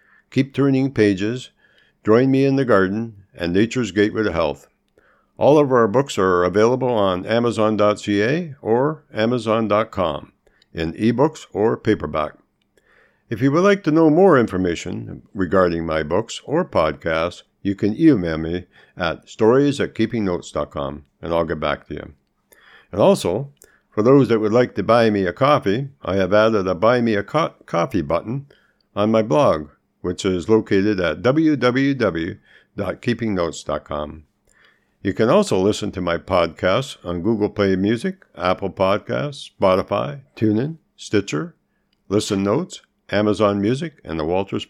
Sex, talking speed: male, 140 wpm